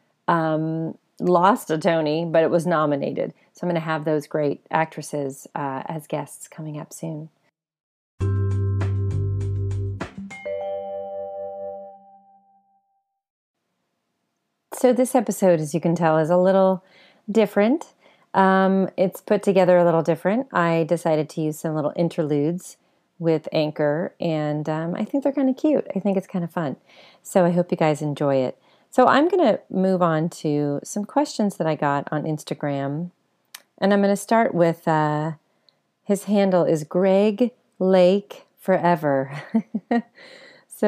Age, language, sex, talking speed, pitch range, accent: 30-49, English, female, 145 wpm, 150-195 Hz, American